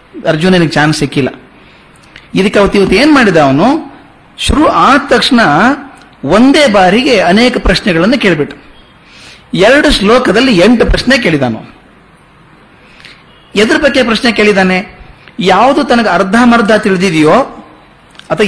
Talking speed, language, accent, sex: 100 wpm, Kannada, native, male